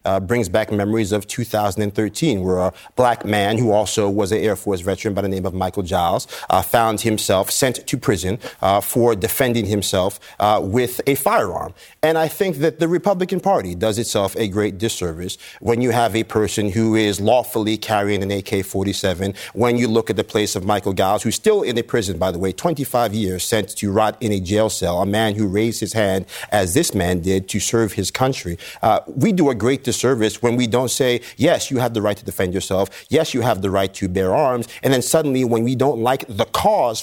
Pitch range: 100-120 Hz